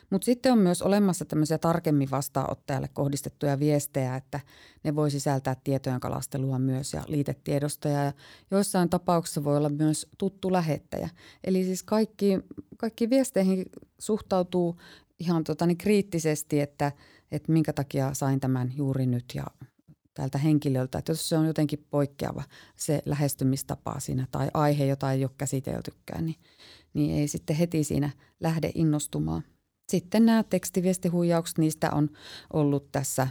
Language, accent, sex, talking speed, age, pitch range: Finnish, native, female, 140 wpm, 30-49, 140-160 Hz